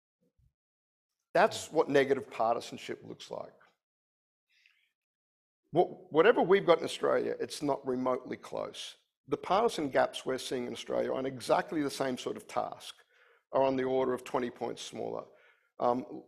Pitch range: 120-165 Hz